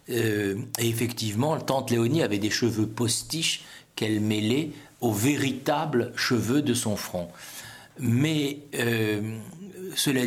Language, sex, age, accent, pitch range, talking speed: French, male, 60-79, French, 105-140 Hz, 115 wpm